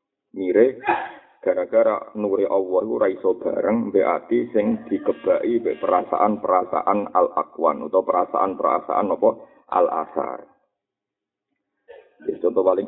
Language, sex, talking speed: Indonesian, male, 90 wpm